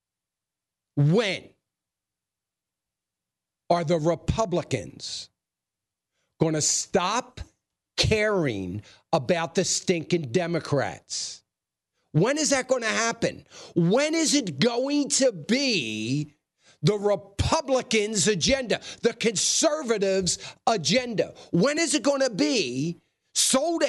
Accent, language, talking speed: American, English, 95 wpm